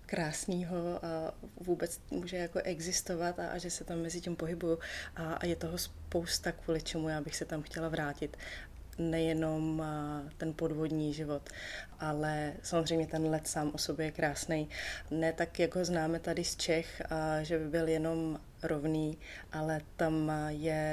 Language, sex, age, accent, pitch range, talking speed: Czech, female, 20-39, native, 150-165 Hz, 160 wpm